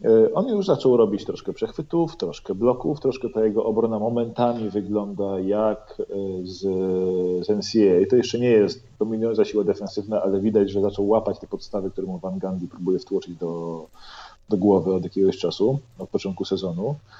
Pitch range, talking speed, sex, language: 95-115 Hz, 165 wpm, male, Polish